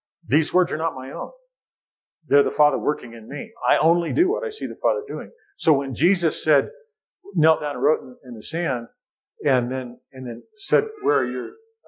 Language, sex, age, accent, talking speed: English, male, 50-69, American, 210 wpm